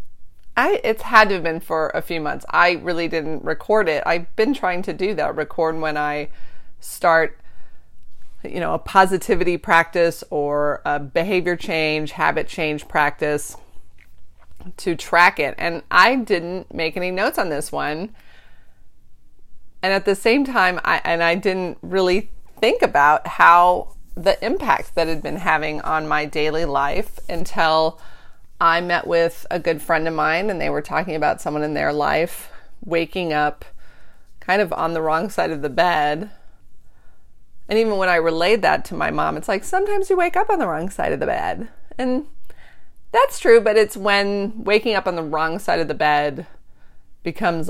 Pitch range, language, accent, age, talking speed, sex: 155-190 Hz, English, American, 30-49, 175 wpm, female